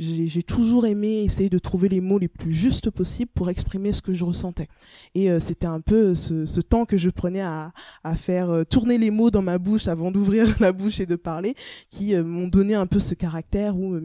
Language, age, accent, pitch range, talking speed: French, 20-39, French, 170-210 Hz, 245 wpm